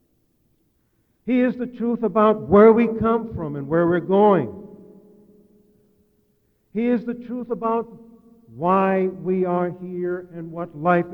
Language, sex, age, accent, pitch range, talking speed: English, male, 50-69, American, 170-205 Hz, 135 wpm